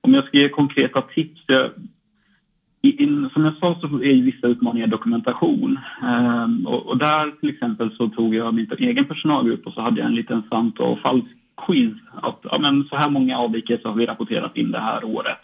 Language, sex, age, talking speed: Swedish, male, 30-49, 185 wpm